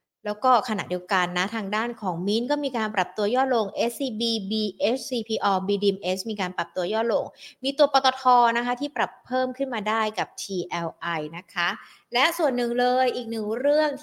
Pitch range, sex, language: 185-245 Hz, female, Thai